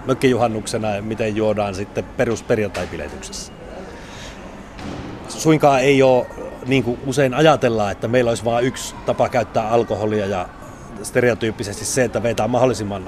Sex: male